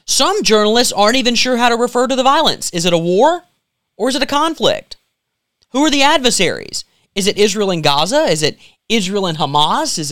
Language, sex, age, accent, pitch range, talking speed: English, male, 30-49, American, 155-235 Hz, 210 wpm